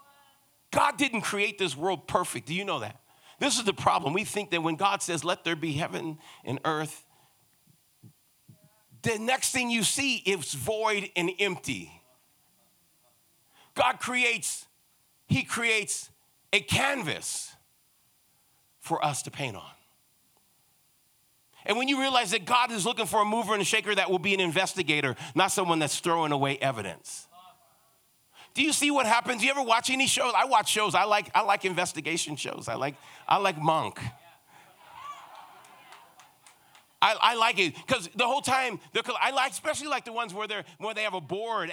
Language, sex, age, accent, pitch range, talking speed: English, male, 50-69, American, 165-235 Hz, 170 wpm